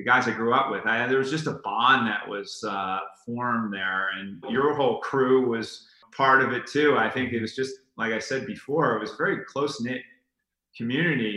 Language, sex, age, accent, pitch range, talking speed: English, male, 30-49, American, 105-120 Hz, 200 wpm